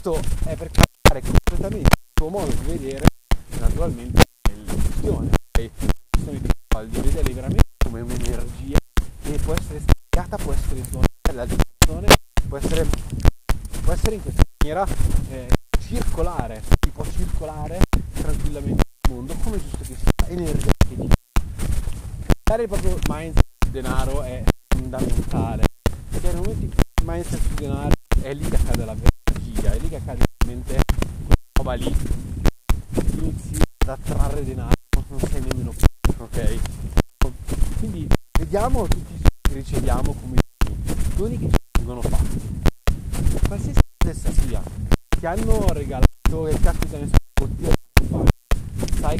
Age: 30-49